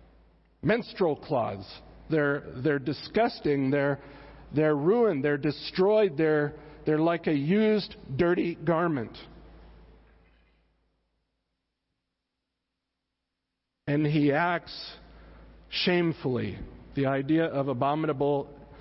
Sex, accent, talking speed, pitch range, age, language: male, American, 80 wpm, 115-160 Hz, 50-69, English